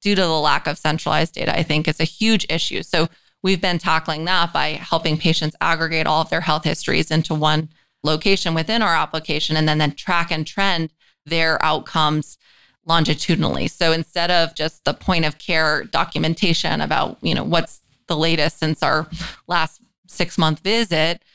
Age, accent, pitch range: 30-49, American, 160-185 Hz